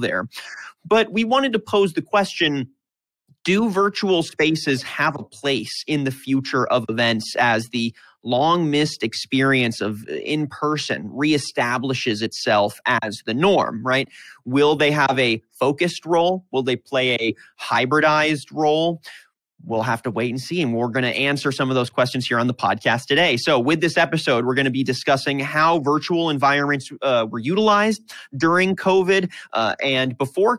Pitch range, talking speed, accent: 125-160 Hz, 165 wpm, American